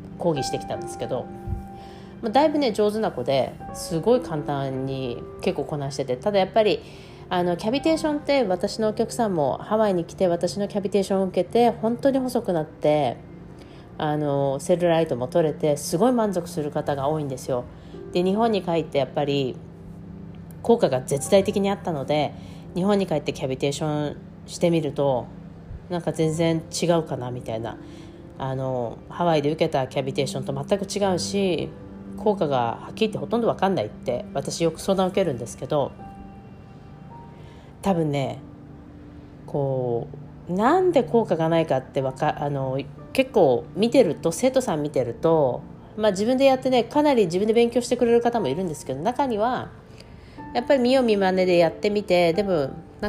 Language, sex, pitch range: Japanese, female, 145-210 Hz